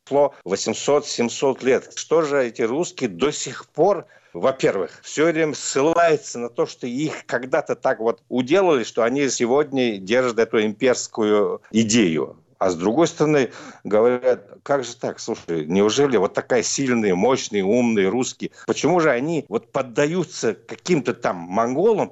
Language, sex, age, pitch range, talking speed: Russian, male, 50-69, 115-155 Hz, 140 wpm